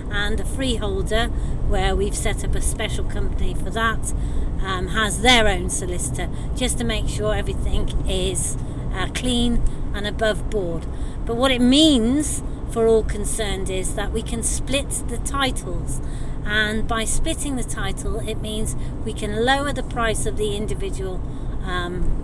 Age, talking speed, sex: 40-59, 155 wpm, female